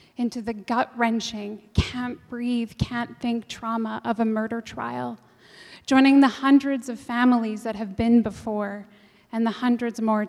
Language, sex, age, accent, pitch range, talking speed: English, female, 10-29, American, 215-250 Hz, 135 wpm